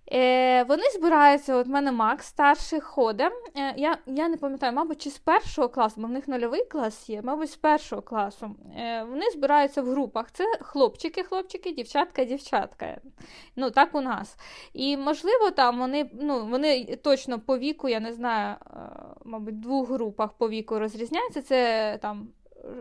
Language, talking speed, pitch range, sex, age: Ukrainian, 155 wpm, 235-295 Hz, female, 20-39